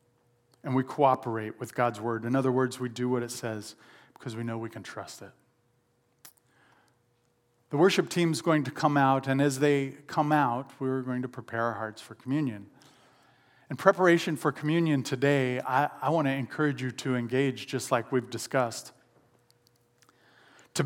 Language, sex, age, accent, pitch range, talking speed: English, male, 40-59, American, 125-170 Hz, 170 wpm